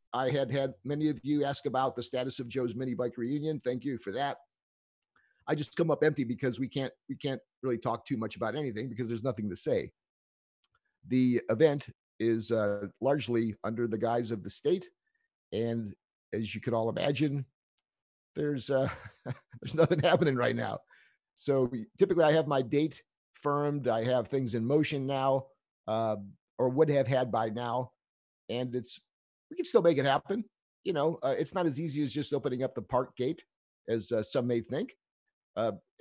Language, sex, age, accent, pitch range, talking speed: English, male, 50-69, American, 115-145 Hz, 185 wpm